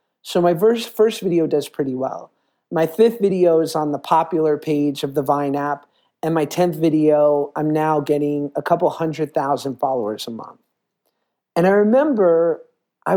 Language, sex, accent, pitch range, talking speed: English, male, American, 145-180 Hz, 175 wpm